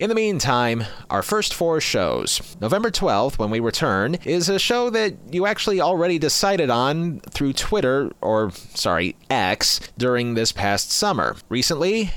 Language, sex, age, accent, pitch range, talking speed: English, male, 30-49, American, 115-180 Hz, 155 wpm